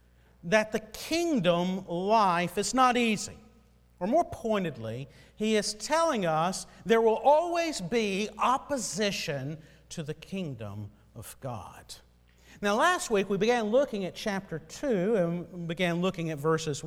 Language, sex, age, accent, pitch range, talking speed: English, male, 50-69, American, 165-225 Hz, 135 wpm